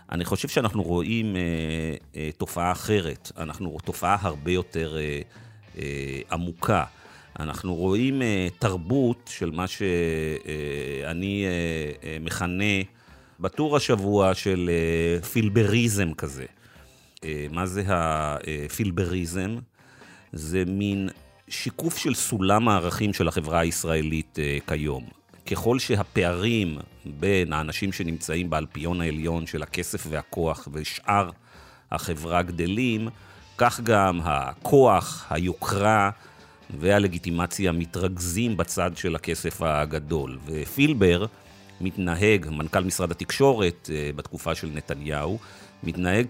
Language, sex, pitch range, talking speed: Hebrew, male, 80-105 Hz, 100 wpm